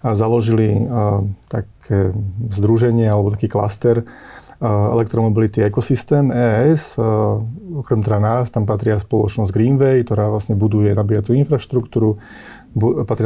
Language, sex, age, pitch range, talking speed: Slovak, male, 30-49, 105-120 Hz, 120 wpm